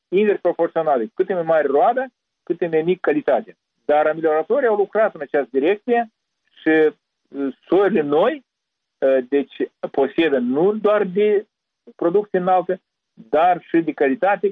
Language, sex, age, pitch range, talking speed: Romanian, male, 50-69, 135-200 Hz, 130 wpm